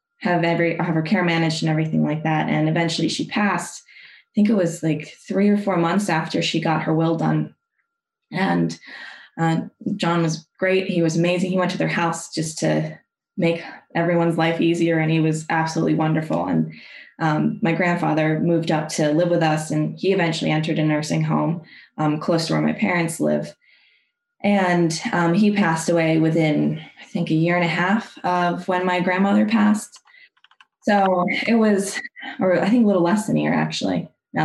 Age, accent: 20-39, American